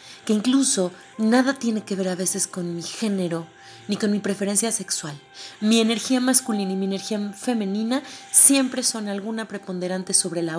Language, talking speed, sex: Spanish, 165 wpm, female